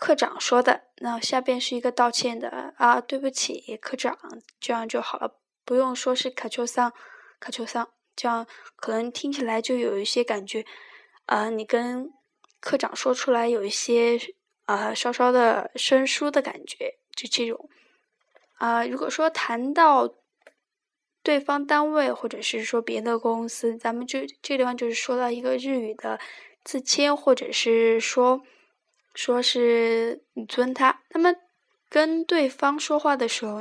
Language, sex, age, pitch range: Chinese, female, 10-29, 235-295 Hz